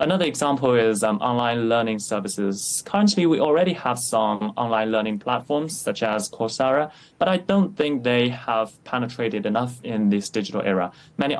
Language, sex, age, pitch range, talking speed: English, male, 20-39, 105-135 Hz, 165 wpm